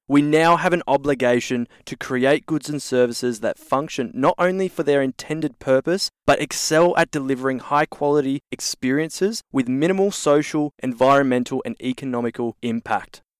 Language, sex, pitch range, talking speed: English, male, 135-165 Hz, 145 wpm